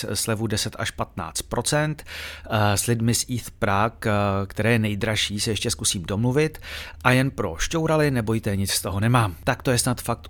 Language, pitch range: Czech, 100-140 Hz